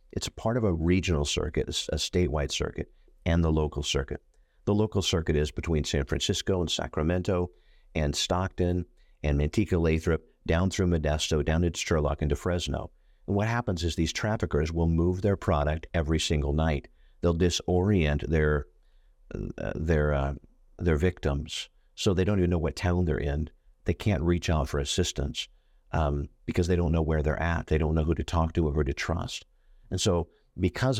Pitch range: 75-90 Hz